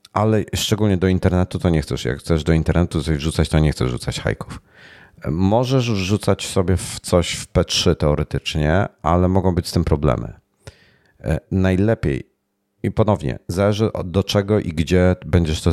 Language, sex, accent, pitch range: Polish, male, native, 80-95 Hz